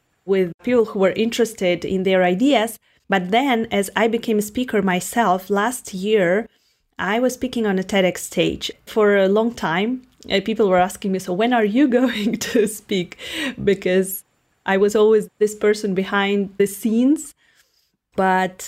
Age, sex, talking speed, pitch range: 30-49, female, 160 wpm, 185-230 Hz